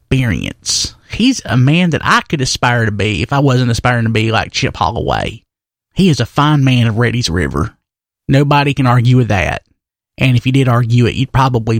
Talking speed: 205 wpm